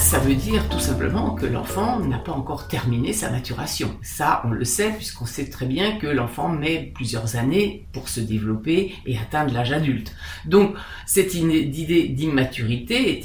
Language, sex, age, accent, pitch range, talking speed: French, female, 50-69, French, 130-195 Hz, 170 wpm